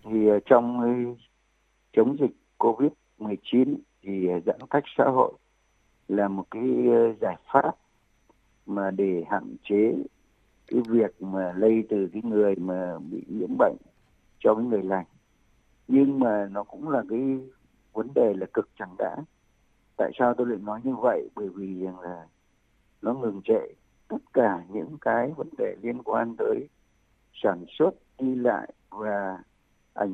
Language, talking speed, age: Vietnamese, 150 wpm, 50-69